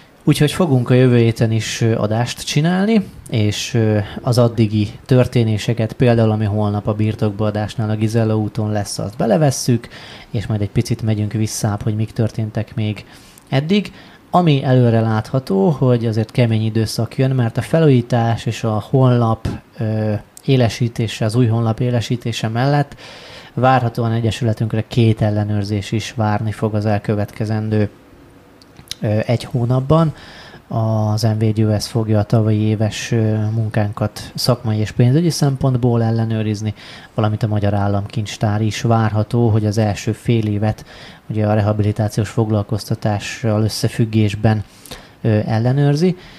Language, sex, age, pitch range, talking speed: Hungarian, male, 30-49, 105-125 Hz, 125 wpm